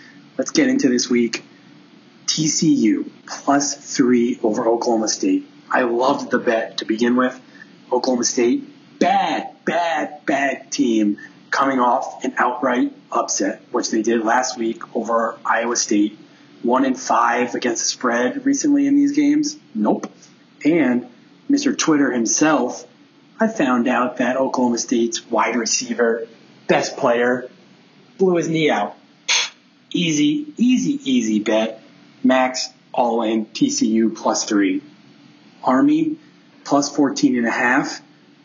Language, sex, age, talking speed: English, male, 30-49, 130 wpm